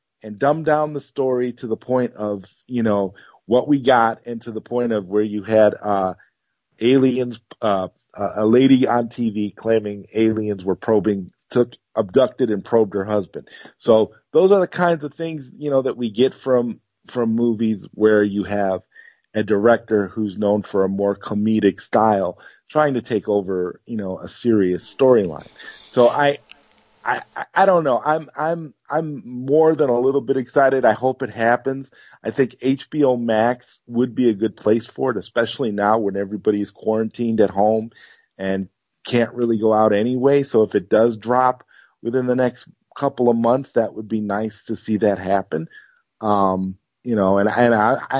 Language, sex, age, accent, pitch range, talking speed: English, male, 40-59, American, 105-130 Hz, 175 wpm